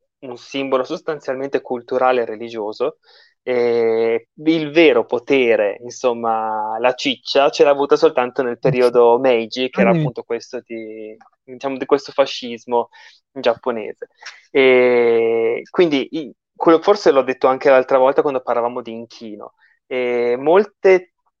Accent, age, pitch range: native, 20-39, 120-150 Hz